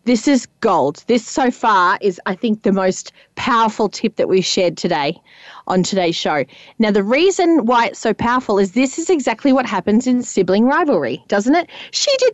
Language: English